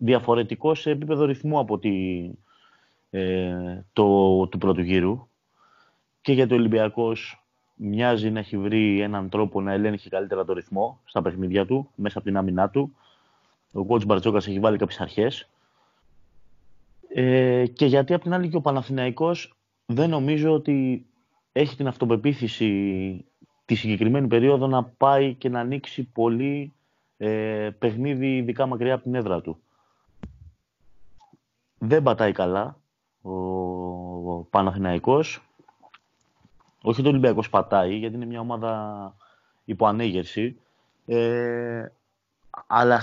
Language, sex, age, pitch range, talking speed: Greek, male, 30-49, 100-135 Hz, 125 wpm